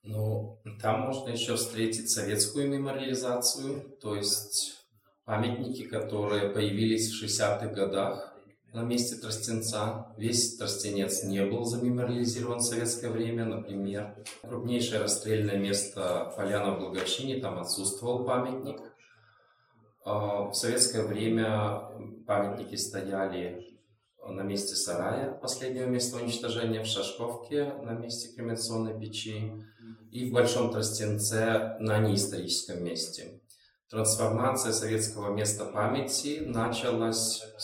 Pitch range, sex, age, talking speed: 105-120 Hz, male, 20-39, 105 wpm